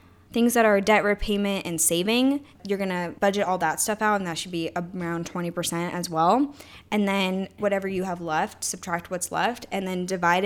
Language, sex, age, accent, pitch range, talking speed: English, female, 10-29, American, 165-200 Hz, 200 wpm